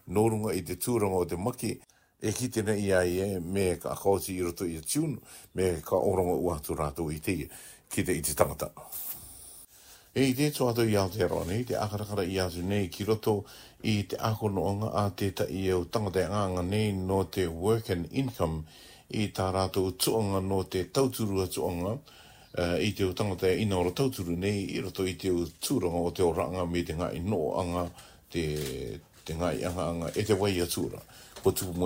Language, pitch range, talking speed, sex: English, 85-105 Hz, 40 wpm, male